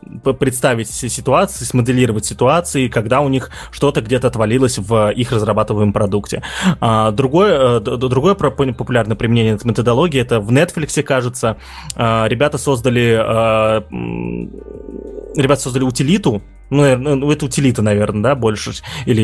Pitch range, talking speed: 115-140 Hz, 110 wpm